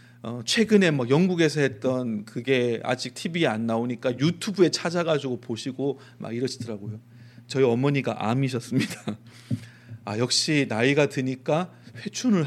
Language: Korean